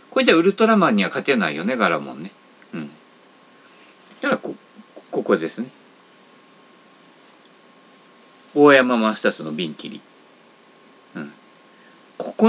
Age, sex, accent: 50-69, male, native